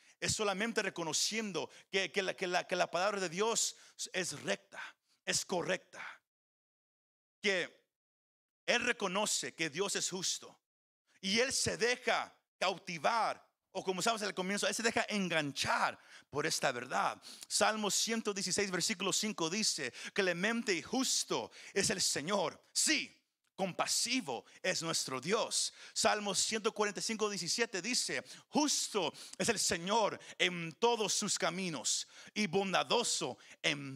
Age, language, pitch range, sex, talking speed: 50-69, Spanish, 185-235 Hz, male, 130 wpm